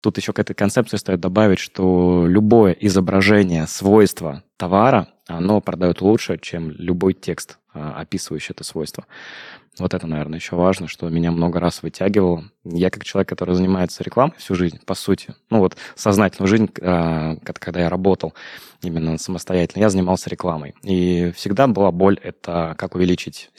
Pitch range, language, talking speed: 85-95 Hz, Russian, 155 wpm